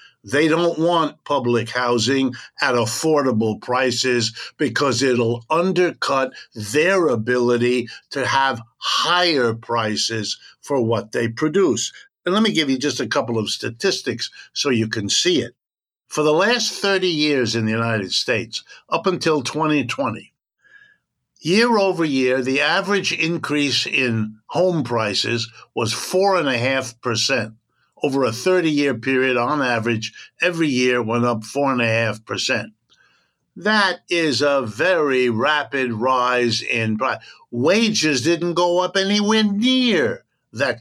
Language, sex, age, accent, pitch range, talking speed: English, male, 60-79, American, 120-175 Hz, 130 wpm